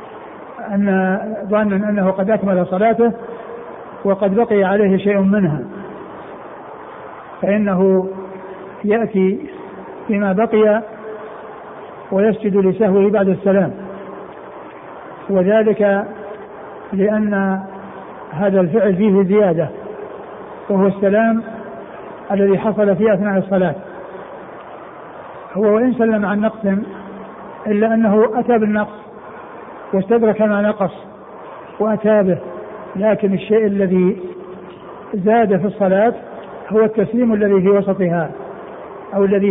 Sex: male